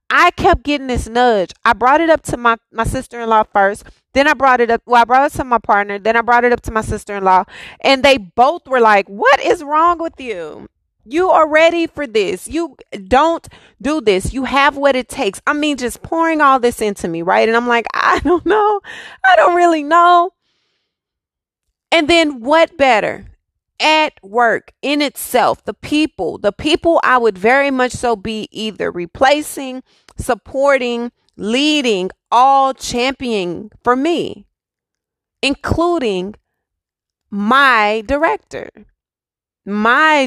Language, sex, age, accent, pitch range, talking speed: English, female, 30-49, American, 230-315 Hz, 160 wpm